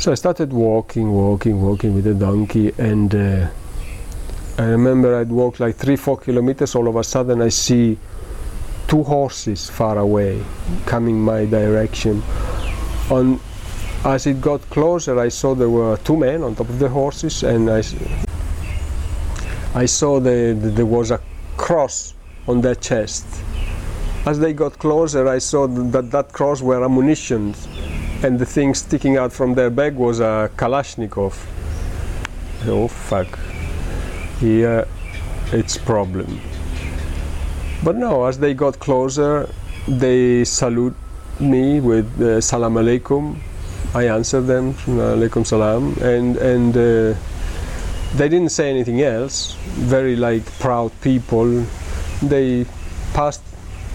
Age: 50-69